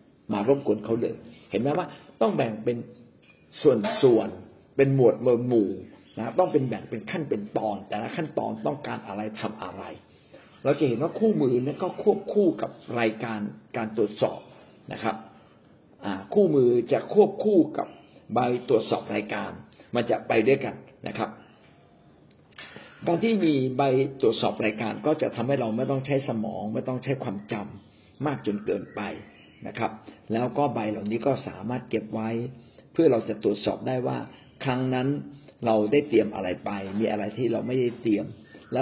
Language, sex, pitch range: Thai, male, 110-140 Hz